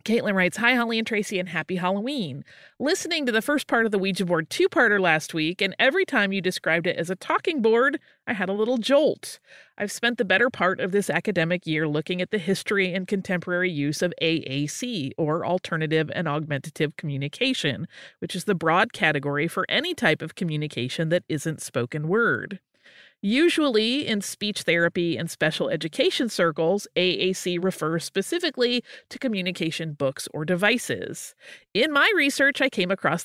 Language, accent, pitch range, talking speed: English, American, 165-235 Hz, 170 wpm